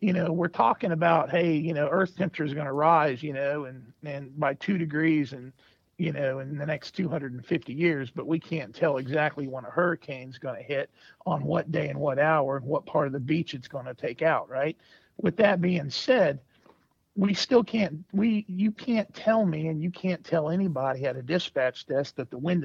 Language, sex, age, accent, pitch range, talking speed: English, male, 50-69, American, 140-175 Hz, 220 wpm